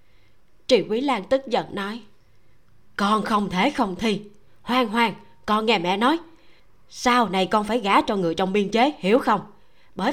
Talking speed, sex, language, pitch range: 180 wpm, female, Vietnamese, 195-300 Hz